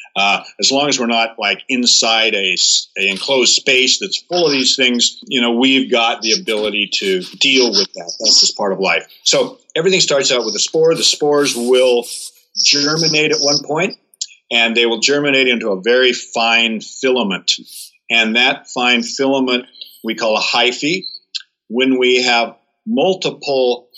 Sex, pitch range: male, 115-135 Hz